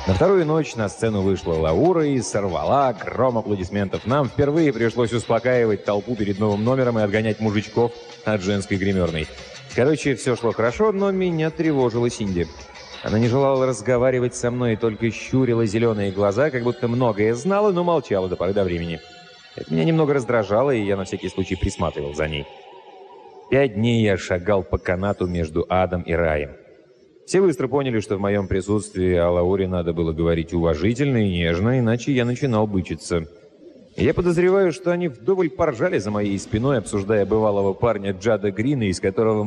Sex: male